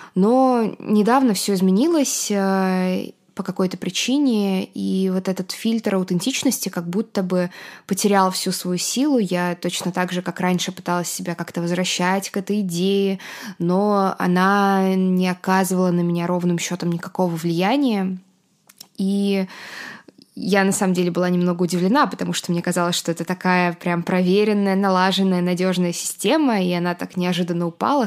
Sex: female